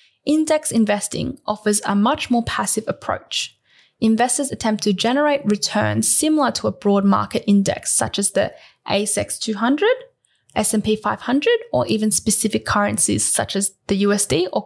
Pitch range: 200-260 Hz